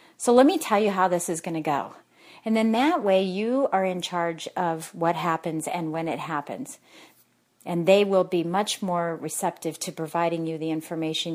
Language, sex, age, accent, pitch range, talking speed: English, female, 40-59, American, 170-215 Hz, 200 wpm